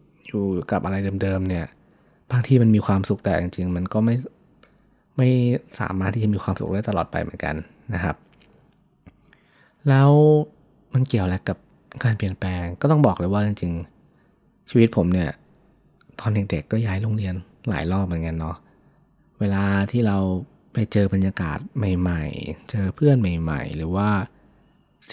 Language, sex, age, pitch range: Thai, male, 20-39, 90-115 Hz